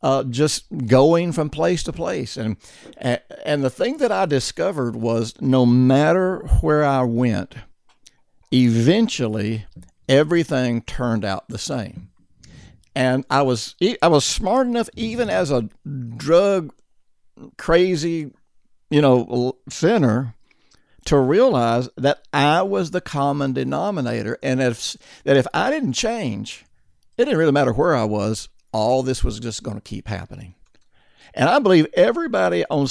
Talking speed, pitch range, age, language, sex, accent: 140 wpm, 110-150 Hz, 60-79, English, male, American